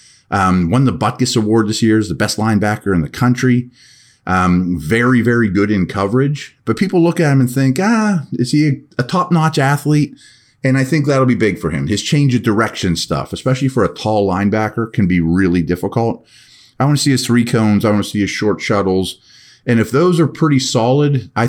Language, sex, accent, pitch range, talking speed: English, male, American, 90-125 Hz, 215 wpm